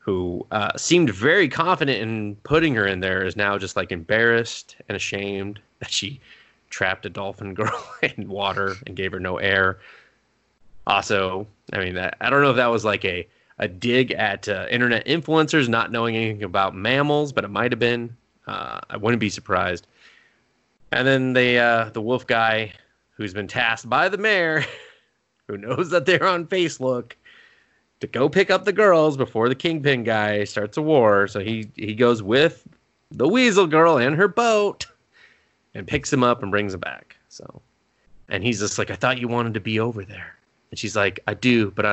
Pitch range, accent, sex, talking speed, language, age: 100-130 Hz, American, male, 190 wpm, English, 20-39